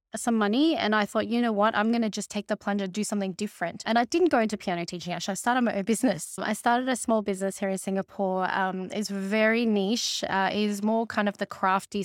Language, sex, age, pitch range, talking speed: English, female, 20-39, 195-225 Hz, 255 wpm